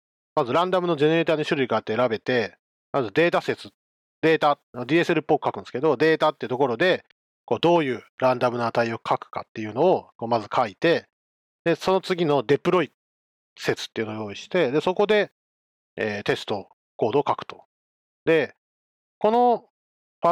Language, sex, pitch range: Japanese, male, 115-180 Hz